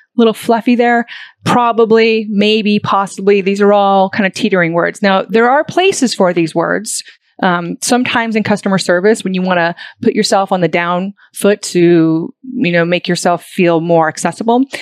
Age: 30-49